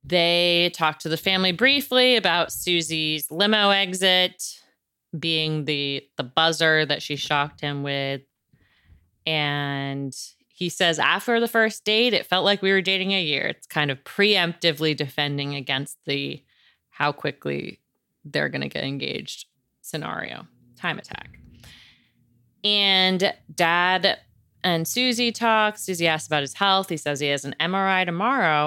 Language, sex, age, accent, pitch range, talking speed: English, female, 30-49, American, 140-185 Hz, 140 wpm